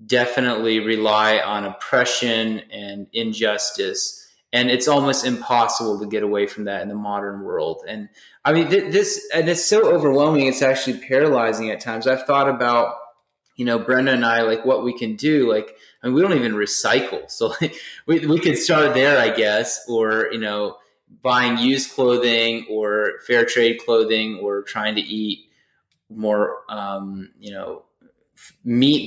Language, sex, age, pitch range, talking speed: English, male, 20-39, 110-140 Hz, 165 wpm